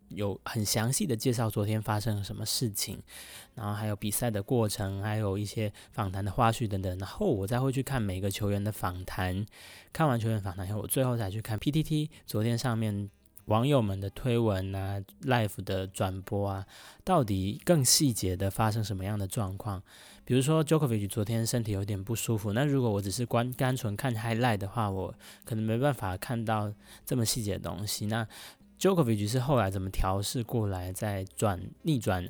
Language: Chinese